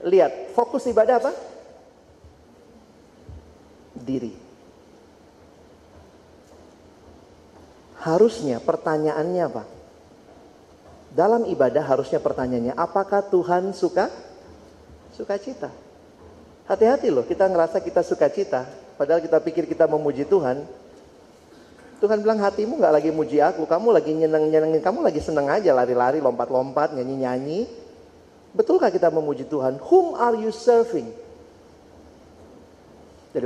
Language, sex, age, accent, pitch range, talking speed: Indonesian, male, 40-59, native, 130-220 Hz, 100 wpm